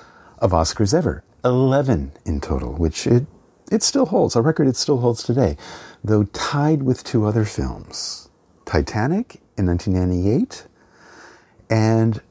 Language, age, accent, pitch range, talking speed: English, 50-69, American, 95-145 Hz, 130 wpm